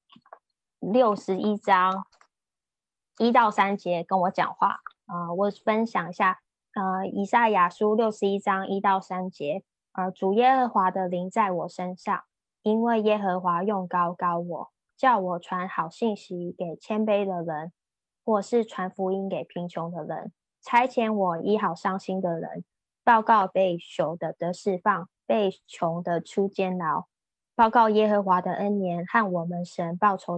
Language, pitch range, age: Chinese, 175-205 Hz, 20-39